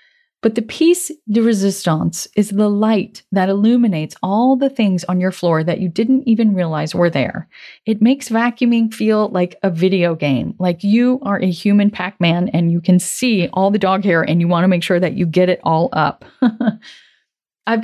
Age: 30-49